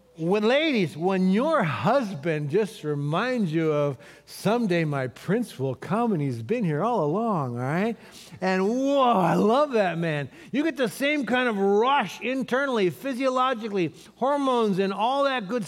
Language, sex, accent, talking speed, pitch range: English, male, American, 160 wpm, 200-295 Hz